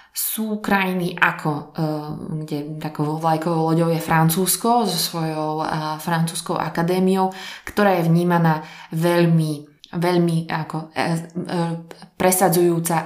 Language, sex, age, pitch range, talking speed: Slovak, female, 20-39, 155-185 Hz, 90 wpm